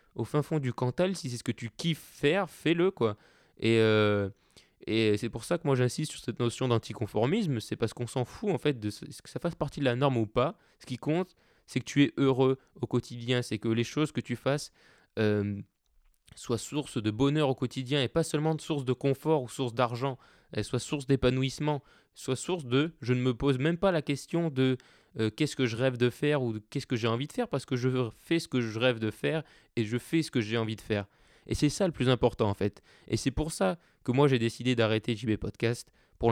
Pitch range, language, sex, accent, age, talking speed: 115-150 Hz, French, male, French, 20-39, 245 wpm